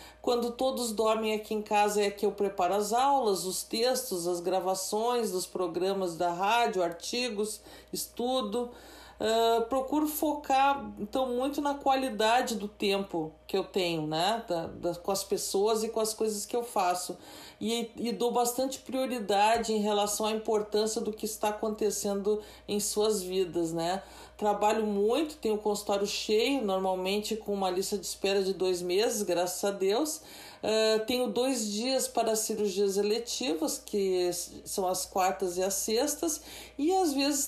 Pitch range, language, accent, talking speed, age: 195-240 Hz, Portuguese, Brazilian, 160 wpm, 40-59